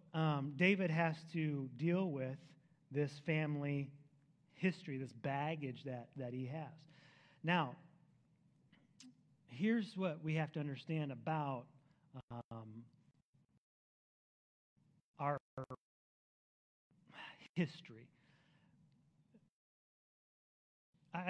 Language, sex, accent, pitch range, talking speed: English, male, American, 140-165 Hz, 75 wpm